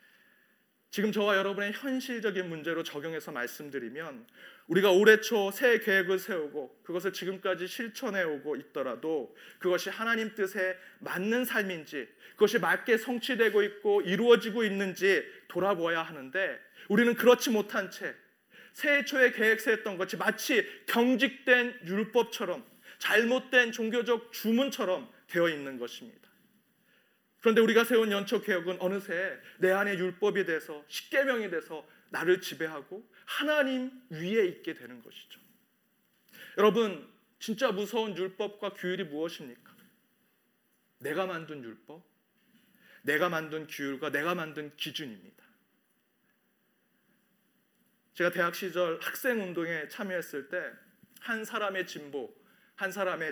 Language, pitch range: Korean, 180-235 Hz